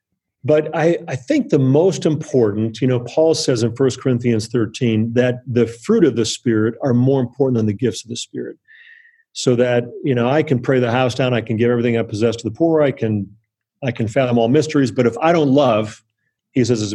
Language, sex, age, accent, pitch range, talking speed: English, male, 40-59, American, 115-150 Hz, 225 wpm